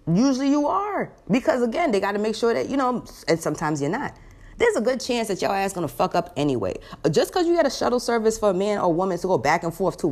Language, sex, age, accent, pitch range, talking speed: English, female, 20-39, American, 170-270 Hz, 280 wpm